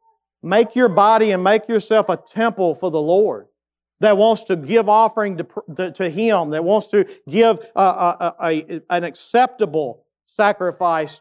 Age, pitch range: 40-59, 195-275 Hz